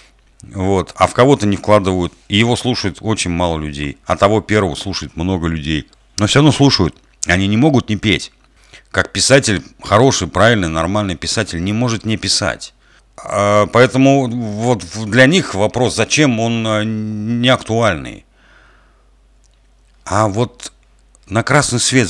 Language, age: Russian, 50-69